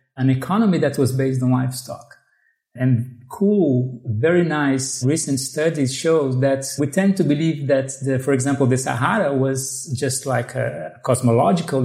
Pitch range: 130-165 Hz